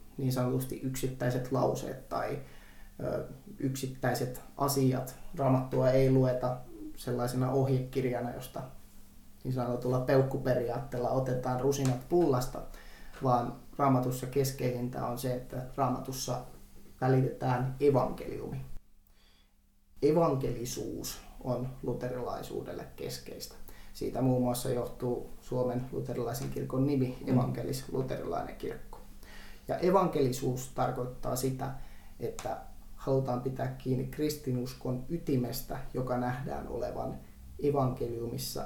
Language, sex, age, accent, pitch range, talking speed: Finnish, male, 20-39, native, 120-135 Hz, 90 wpm